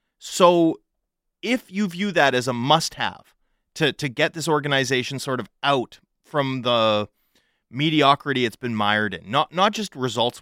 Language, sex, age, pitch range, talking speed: English, male, 30-49, 115-160 Hz, 160 wpm